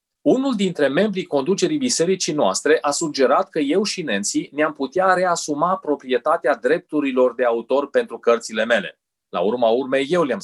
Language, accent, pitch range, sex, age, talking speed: Romanian, native, 115-180 Hz, male, 30-49, 155 wpm